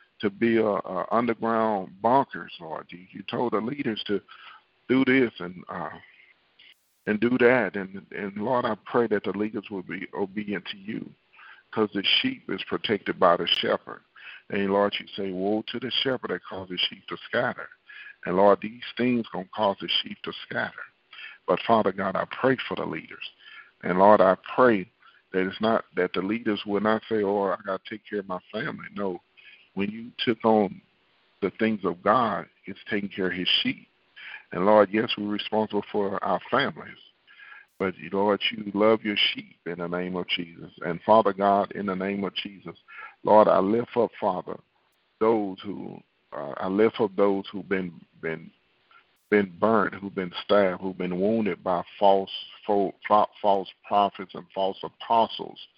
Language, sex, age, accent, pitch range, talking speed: English, male, 50-69, American, 95-110 Hz, 180 wpm